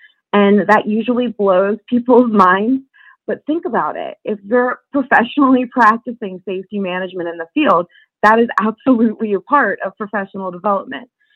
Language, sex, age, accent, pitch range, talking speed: English, female, 20-39, American, 185-230 Hz, 145 wpm